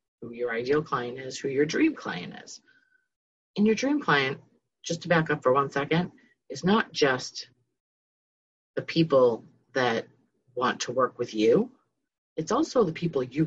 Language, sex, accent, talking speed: English, female, American, 165 wpm